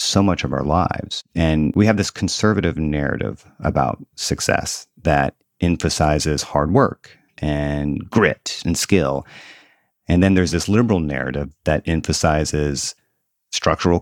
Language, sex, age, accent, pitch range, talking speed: English, male, 30-49, American, 75-105 Hz, 130 wpm